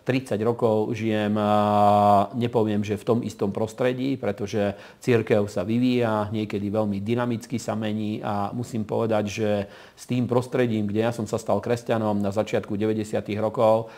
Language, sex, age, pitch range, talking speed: Slovak, male, 40-59, 105-120 Hz, 150 wpm